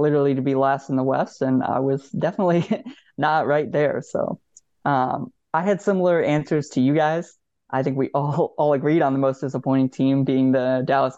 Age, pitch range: 20-39, 135-165 Hz